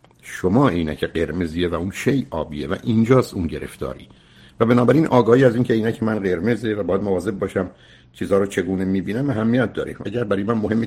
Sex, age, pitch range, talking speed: male, 60-79, 100-130 Hz, 200 wpm